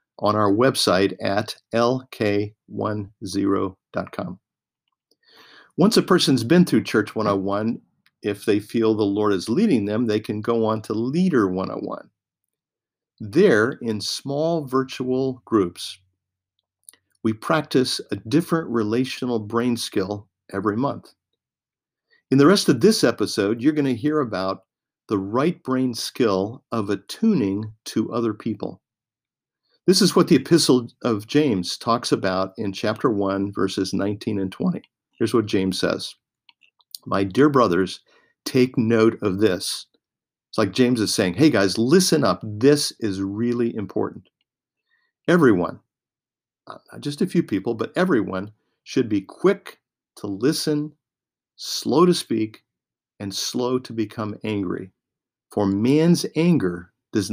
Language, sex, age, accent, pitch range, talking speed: English, male, 50-69, American, 100-130 Hz, 130 wpm